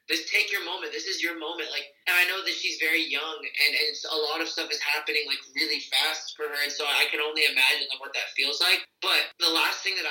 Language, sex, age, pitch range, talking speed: English, male, 20-39, 155-210 Hz, 265 wpm